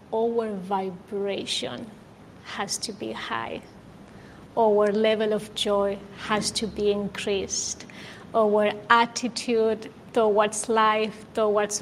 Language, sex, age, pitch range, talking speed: English, female, 30-49, 205-240 Hz, 95 wpm